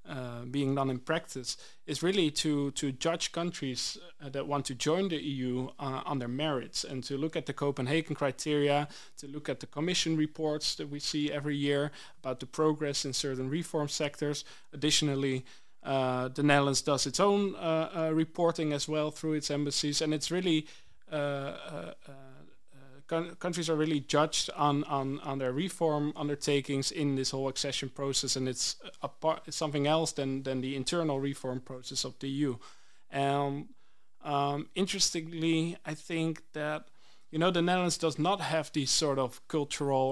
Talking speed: 175 wpm